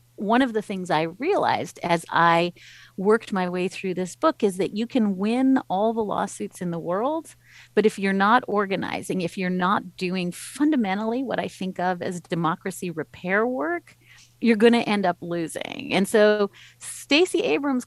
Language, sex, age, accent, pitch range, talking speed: English, female, 40-59, American, 170-230 Hz, 180 wpm